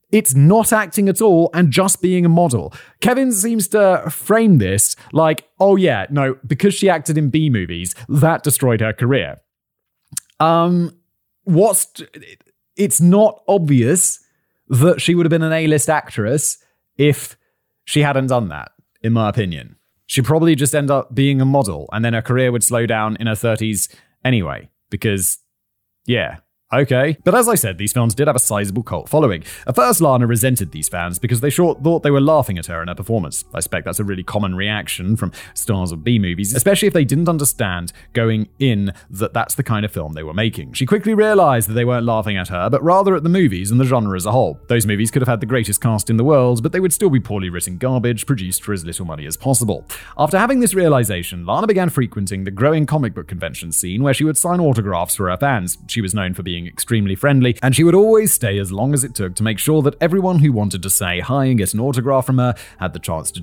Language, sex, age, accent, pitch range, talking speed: English, male, 30-49, British, 100-155 Hz, 220 wpm